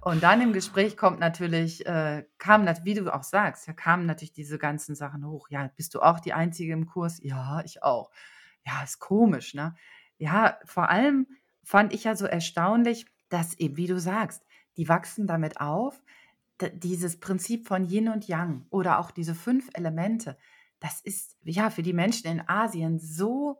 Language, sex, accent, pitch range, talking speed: German, female, German, 160-205 Hz, 185 wpm